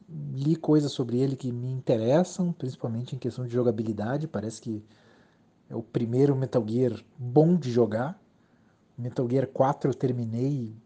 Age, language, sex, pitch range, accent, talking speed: 40-59, Portuguese, male, 125-190 Hz, Brazilian, 155 wpm